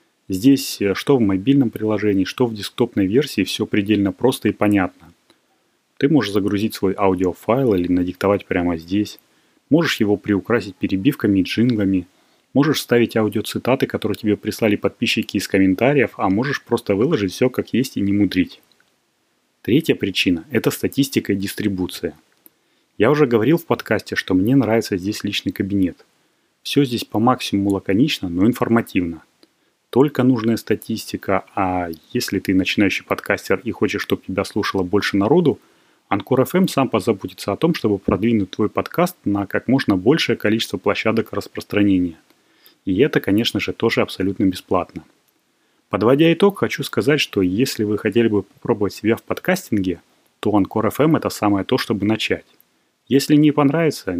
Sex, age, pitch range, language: male, 30-49, 100-120 Hz, Russian